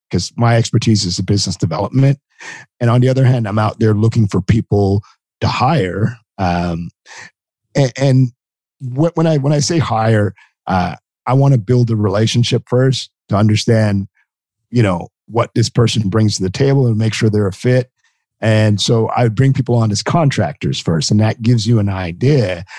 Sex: male